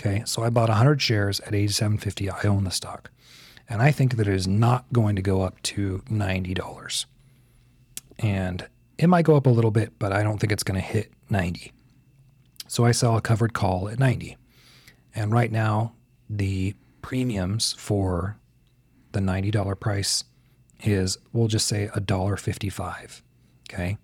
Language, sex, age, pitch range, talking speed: English, male, 40-59, 100-125 Hz, 160 wpm